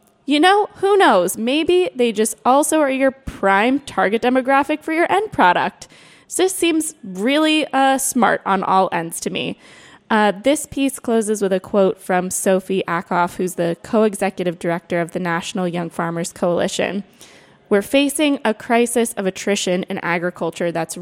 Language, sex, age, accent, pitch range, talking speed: English, female, 20-39, American, 185-255 Hz, 165 wpm